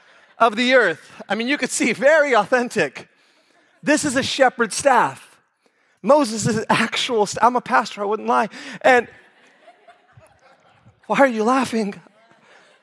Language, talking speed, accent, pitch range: English, 145 wpm, American, 225-270 Hz